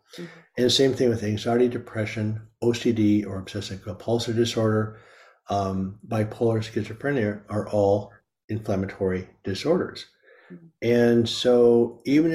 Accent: American